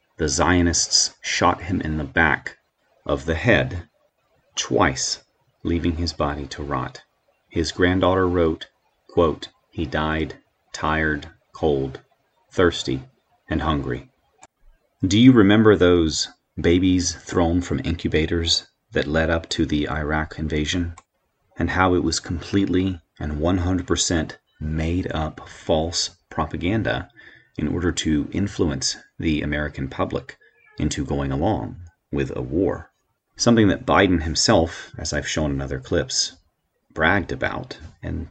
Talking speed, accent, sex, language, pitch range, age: 125 wpm, American, male, English, 75-95 Hz, 30-49